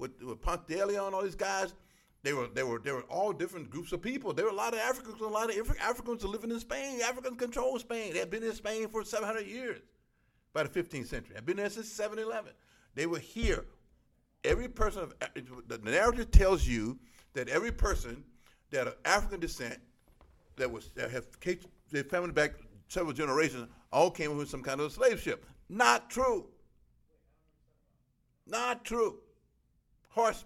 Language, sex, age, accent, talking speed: English, male, 50-69, American, 185 wpm